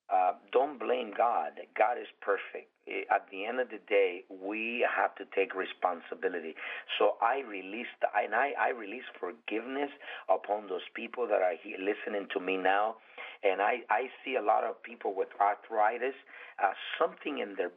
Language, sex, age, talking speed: English, male, 50-69, 165 wpm